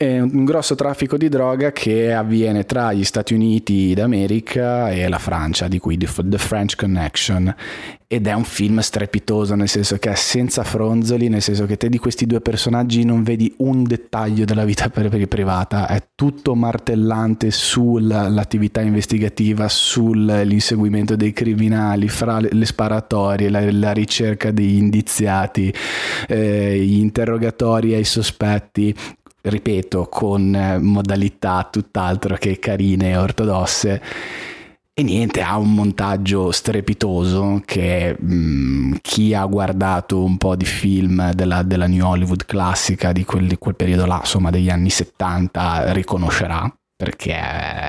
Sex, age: male, 30-49